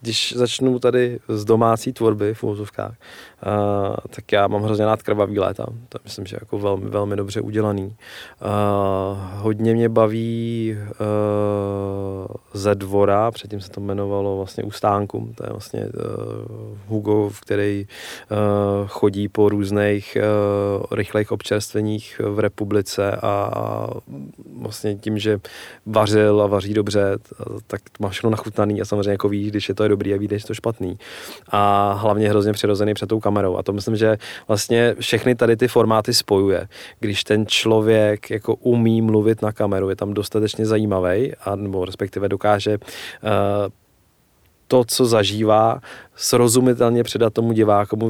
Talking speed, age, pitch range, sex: 145 wpm, 20-39, 100-110 Hz, male